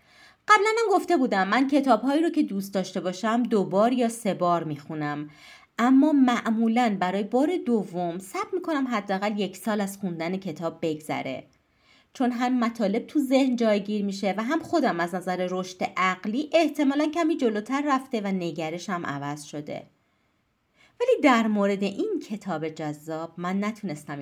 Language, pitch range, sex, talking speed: Persian, 175-275 Hz, female, 150 wpm